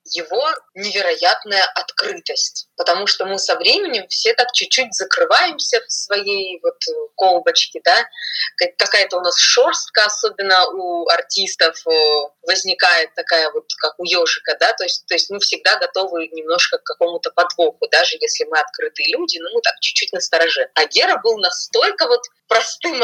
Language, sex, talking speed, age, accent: Russian, female, 150 wpm, 20-39, native